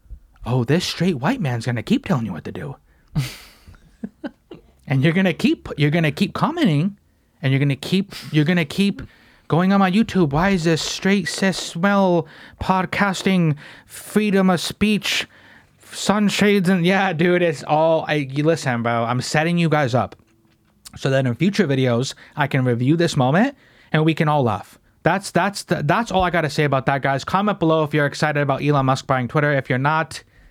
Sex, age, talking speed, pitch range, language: male, 30-49, 185 wpm, 135-185 Hz, English